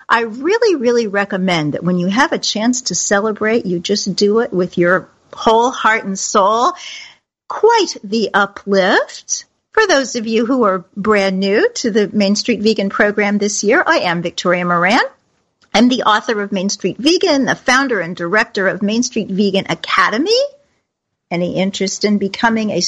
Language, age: English, 50-69